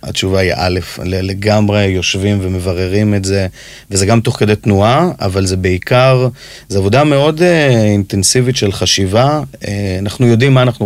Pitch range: 100-125 Hz